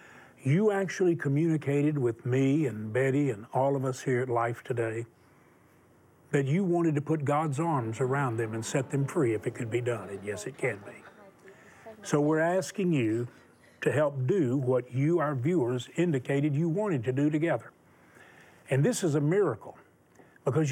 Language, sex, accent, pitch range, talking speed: English, male, American, 130-175 Hz, 175 wpm